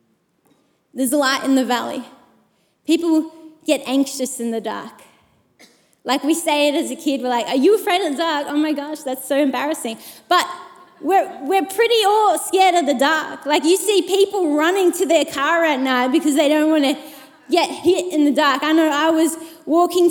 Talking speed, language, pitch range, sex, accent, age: 200 wpm, English, 270-345 Hz, female, Australian, 20-39